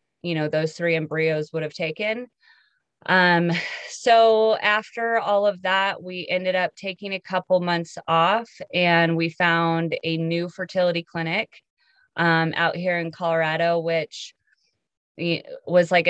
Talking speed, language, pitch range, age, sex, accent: 140 wpm, English, 160-180 Hz, 20-39, female, American